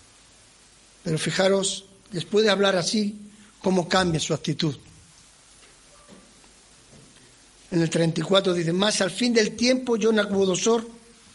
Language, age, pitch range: Spanish, 50-69, 190-240 Hz